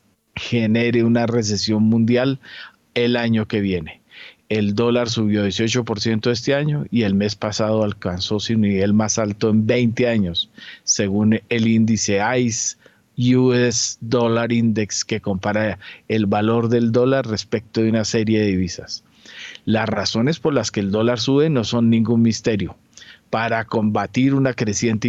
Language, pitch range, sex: Spanish, 110-125 Hz, male